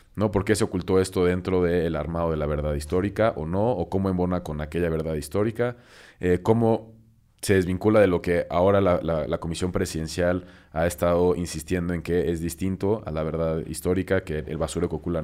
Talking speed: 195 wpm